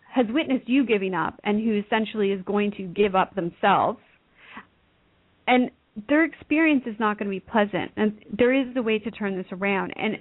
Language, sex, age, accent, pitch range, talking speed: English, female, 40-59, American, 195-240 Hz, 195 wpm